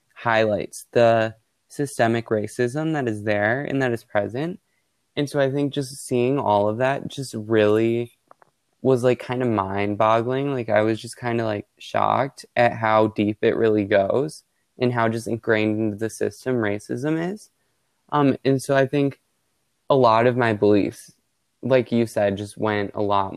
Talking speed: 170 wpm